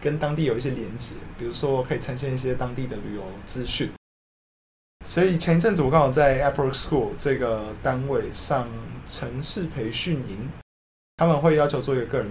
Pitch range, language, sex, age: 115-150 Hz, Chinese, male, 20-39